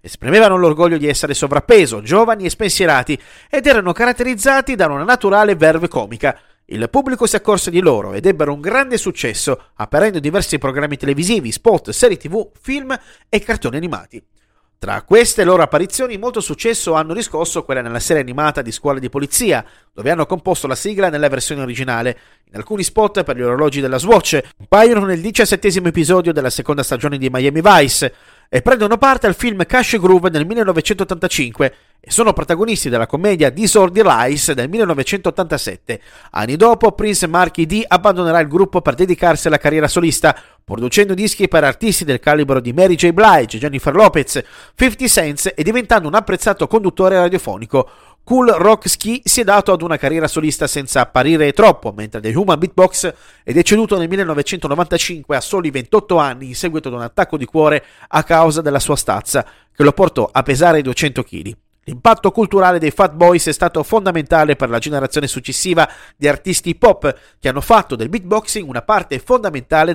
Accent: native